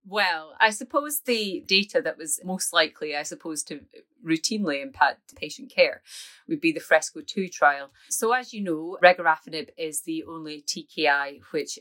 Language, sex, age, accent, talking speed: English, female, 30-49, British, 160 wpm